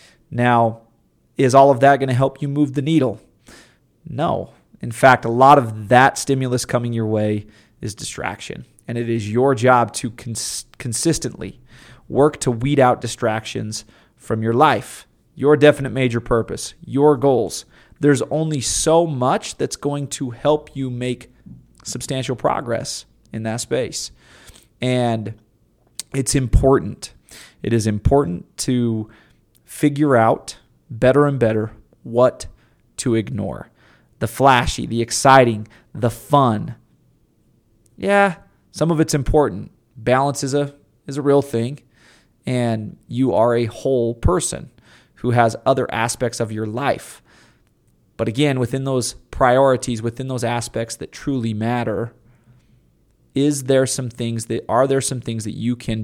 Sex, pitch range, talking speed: male, 115-135 Hz, 140 wpm